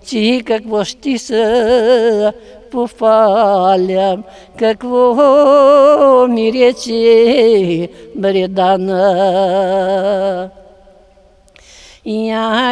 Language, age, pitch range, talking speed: Ukrainian, 50-69, 200-255 Hz, 45 wpm